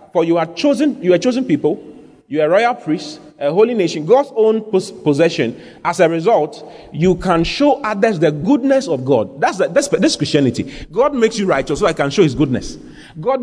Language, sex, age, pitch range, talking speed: English, male, 30-49, 145-215 Hz, 205 wpm